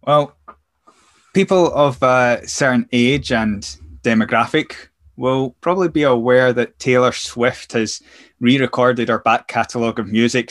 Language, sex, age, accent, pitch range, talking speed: English, male, 20-39, British, 115-130 Hz, 125 wpm